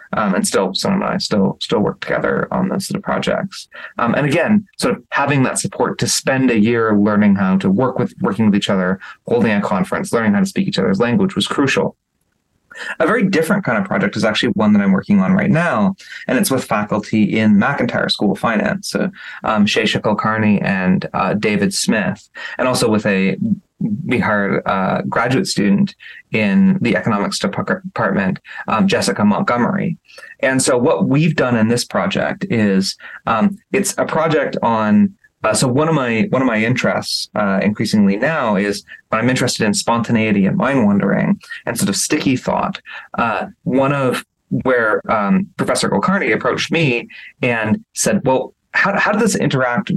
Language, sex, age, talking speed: English, male, 20-39, 185 wpm